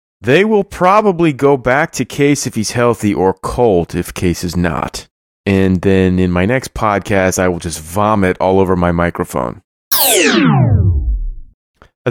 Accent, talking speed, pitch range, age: American, 155 wpm, 90-110 Hz, 30-49